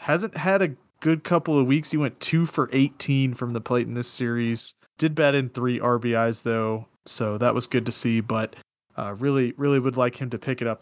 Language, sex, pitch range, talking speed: English, male, 120-145 Hz, 225 wpm